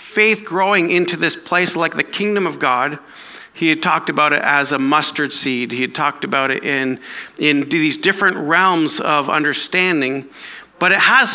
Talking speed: 180 wpm